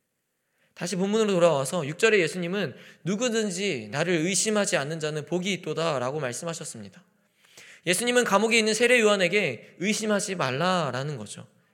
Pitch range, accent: 155-215 Hz, native